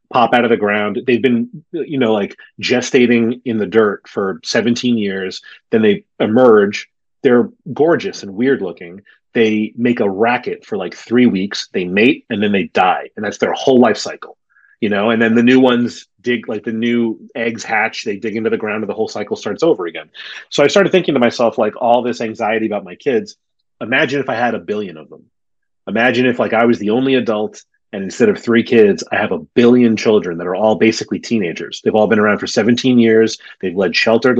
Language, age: English, 30-49